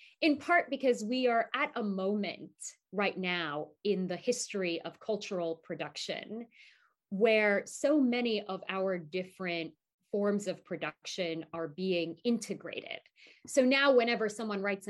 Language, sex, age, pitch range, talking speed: Turkish, female, 30-49, 180-240 Hz, 135 wpm